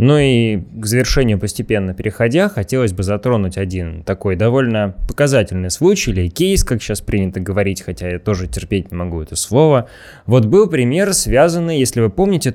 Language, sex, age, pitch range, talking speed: Russian, male, 20-39, 105-140 Hz, 165 wpm